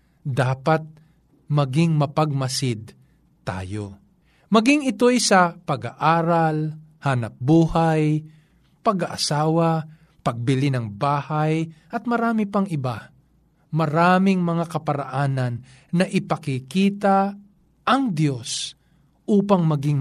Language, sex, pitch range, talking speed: Filipino, male, 140-190 Hz, 80 wpm